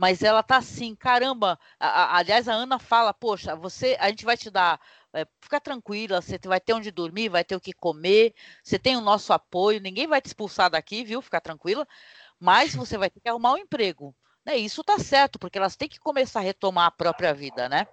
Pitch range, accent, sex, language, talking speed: 185-260 Hz, Brazilian, female, Portuguese, 225 wpm